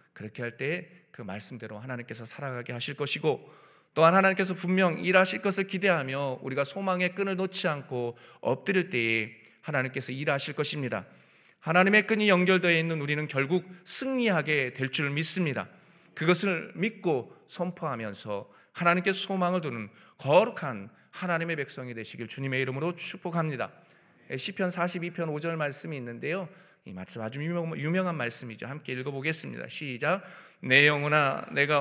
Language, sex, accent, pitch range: Korean, male, native, 125-170 Hz